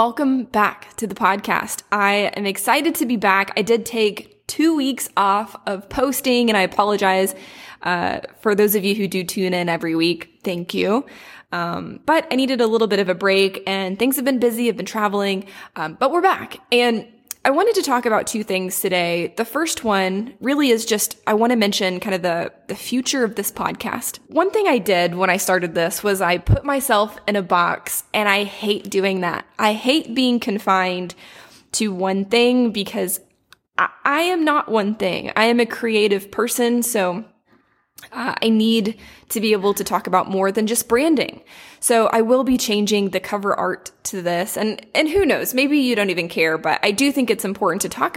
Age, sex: 20-39, female